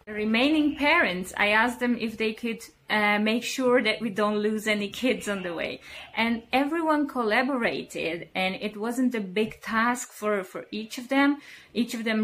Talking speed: 180 wpm